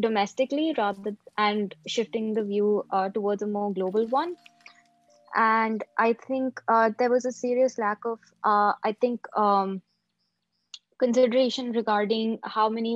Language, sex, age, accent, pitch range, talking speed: English, female, 20-39, Indian, 200-230 Hz, 140 wpm